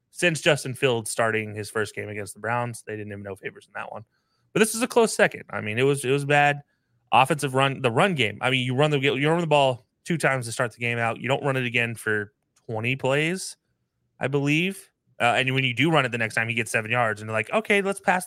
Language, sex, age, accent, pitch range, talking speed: English, male, 20-39, American, 110-140 Hz, 270 wpm